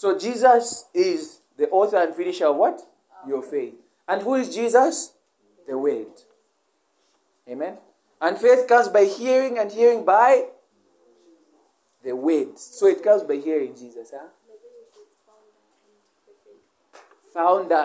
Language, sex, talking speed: English, male, 120 wpm